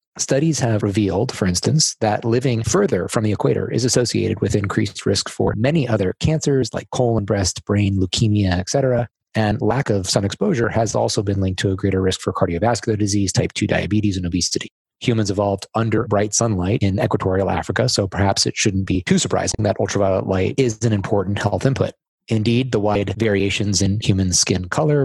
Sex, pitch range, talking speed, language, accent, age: male, 95-115 Hz, 185 wpm, English, American, 30-49